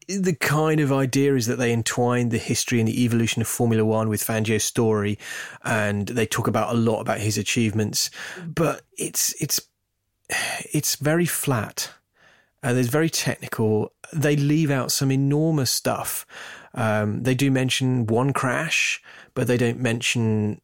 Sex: male